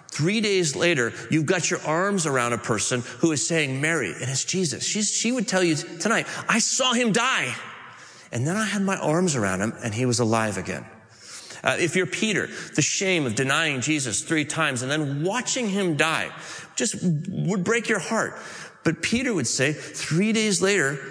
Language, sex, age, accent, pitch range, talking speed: English, male, 40-59, American, 120-185 Hz, 190 wpm